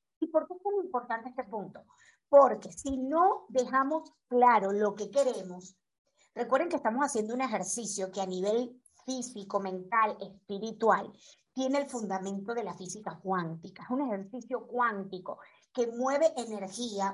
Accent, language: American, Spanish